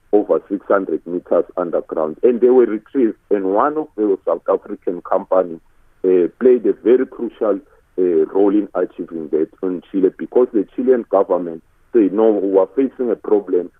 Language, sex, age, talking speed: English, male, 50-69, 165 wpm